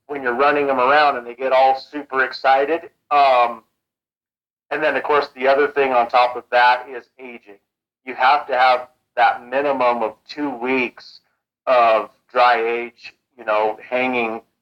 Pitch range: 120-140 Hz